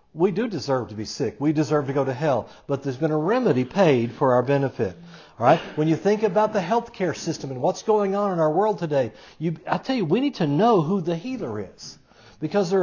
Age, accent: 60-79, American